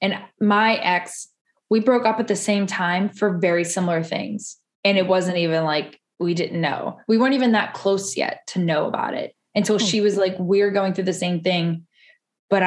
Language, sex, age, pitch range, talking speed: English, female, 10-29, 175-220 Hz, 205 wpm